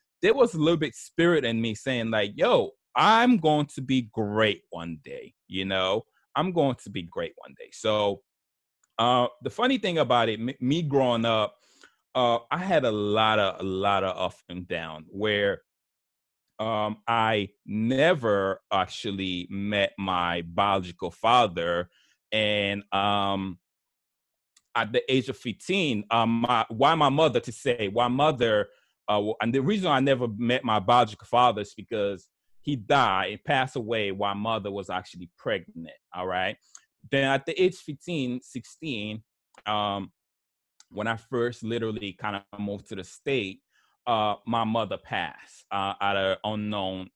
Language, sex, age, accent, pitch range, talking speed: English, male, 30-49, American, 100-135 Hz, 155 wpm